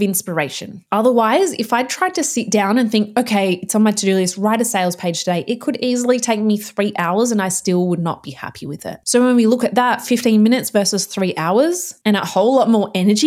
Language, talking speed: English, 245 wpm